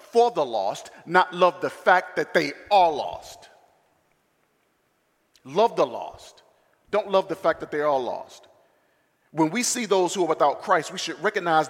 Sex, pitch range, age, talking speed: male, 155-200 Hz, 40-59, 170 wpm